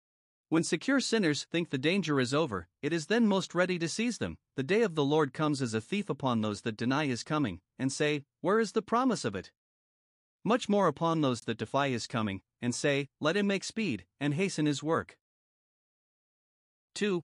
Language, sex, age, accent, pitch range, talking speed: English, male, 40-59, American, 130-175 Hz, 200 wpm